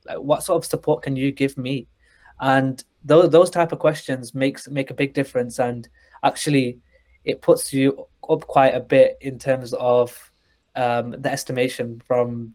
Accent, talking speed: British, 165 wpm